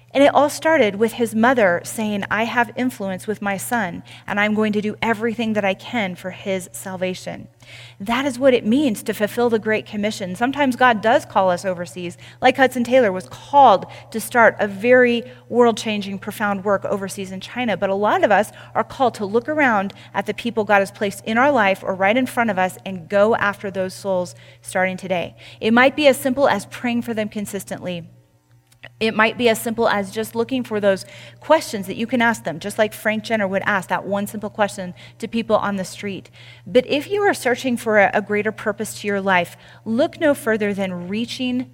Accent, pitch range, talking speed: American, 190-235 Hz, 210 wpm